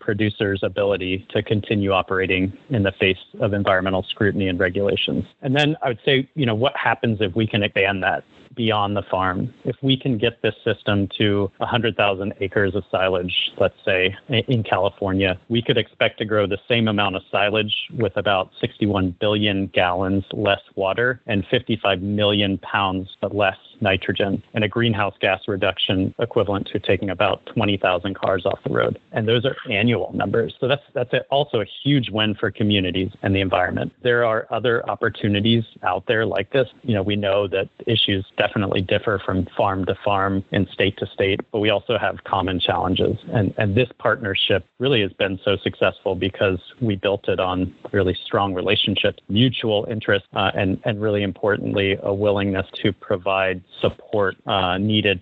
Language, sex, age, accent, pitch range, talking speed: English, male, 30-49, American, 95-115 Hz, 175 wpm